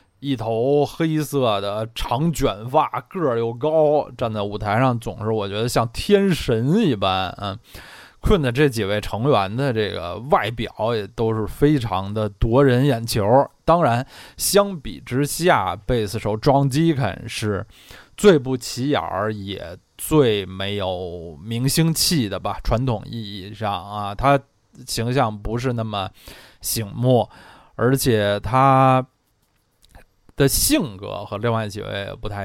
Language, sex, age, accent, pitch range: Chinese, male, 20-39, native, 100-140 Hz